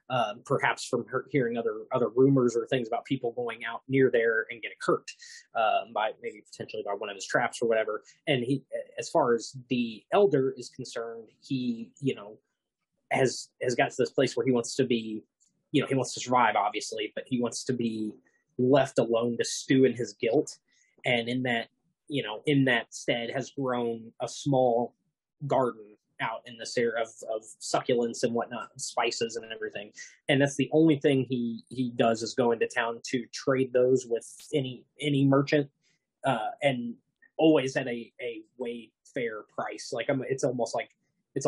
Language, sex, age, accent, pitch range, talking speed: English, male, 20-39, American, 120-165 Hz, 190 wpm